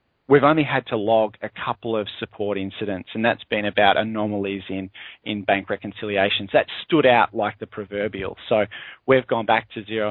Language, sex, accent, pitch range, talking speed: English, male, Australian, 105-120 Hz, 185 wpm